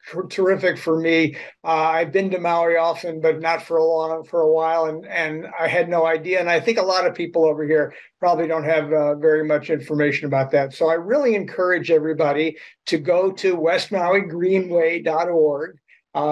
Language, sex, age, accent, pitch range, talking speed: English, male, 60-79, American, 155-180 Hz, 190 wpm